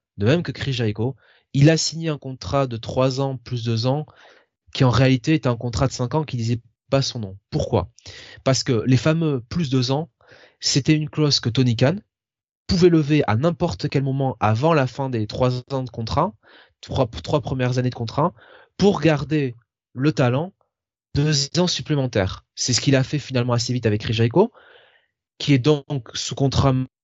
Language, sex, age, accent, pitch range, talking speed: French, male, 20-39, French, 125-160 Hz, 195 wpm